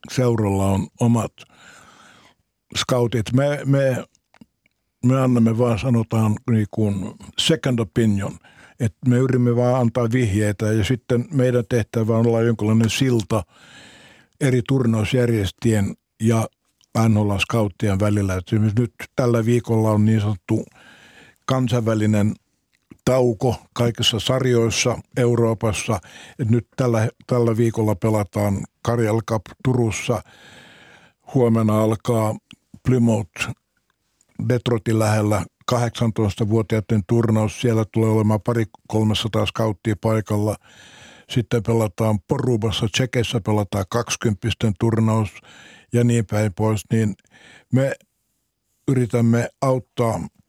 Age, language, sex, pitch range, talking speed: 60-79, Finnish, male, 110-120 Hz, 95 wpm